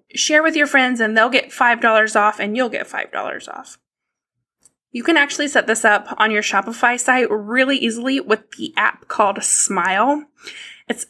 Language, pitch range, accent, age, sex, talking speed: English, 220-305 Hz, American, 20-39, female, 175 wpm